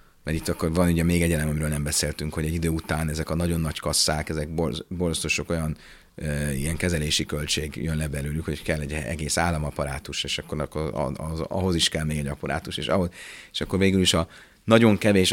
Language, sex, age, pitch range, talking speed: Hungarian, male, 30-49, 75-90 Hz, 215 wpm